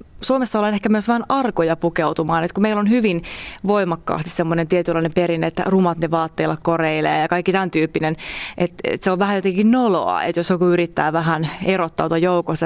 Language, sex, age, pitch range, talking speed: Finnish, female, 20-39, 165-200 Hz, 185 wpm